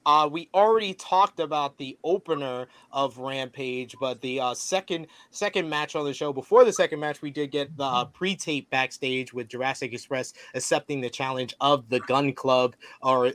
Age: 30-49